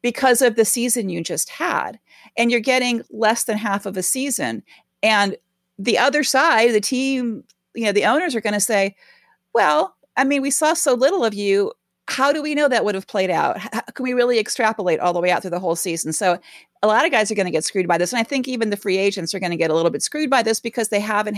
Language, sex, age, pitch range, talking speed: English, female, 40-59, 190-245 Hz, 260 wpm